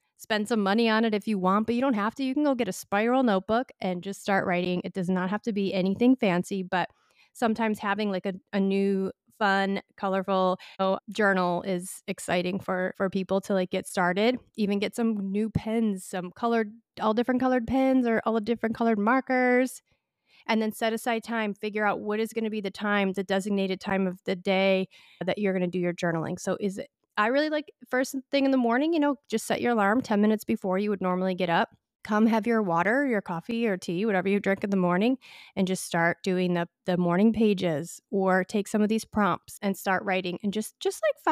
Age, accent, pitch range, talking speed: 30-49, American, 190-230 Hz, 225 wpm